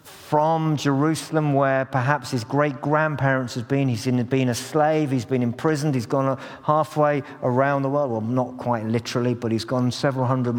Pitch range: 125-145 Hz